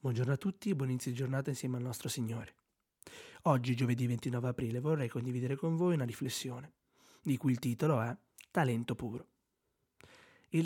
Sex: male